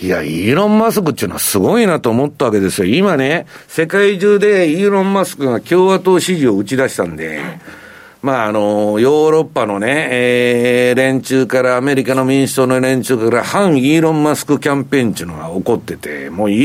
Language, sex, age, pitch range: Japanese, male, 60-79, 115-185 Hz